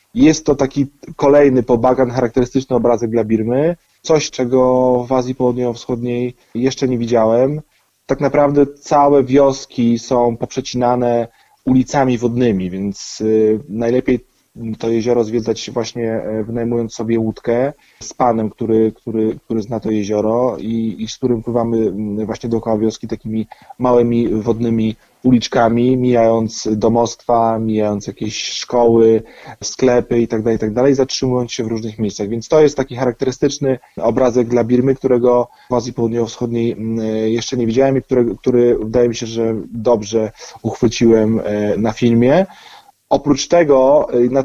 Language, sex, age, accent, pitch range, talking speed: Polish, male, 20-39, native, 115-130 Hz, 130 wpm